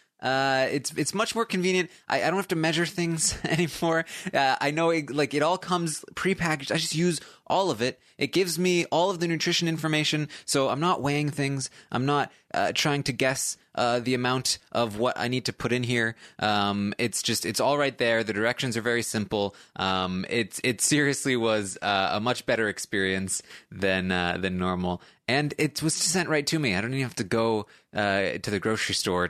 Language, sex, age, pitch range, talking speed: English, male, 20-39, 110-155 Hz, 210 wpm